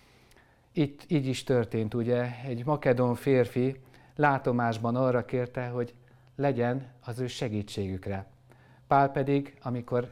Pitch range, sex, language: 115-140 Hz, male, Hungarian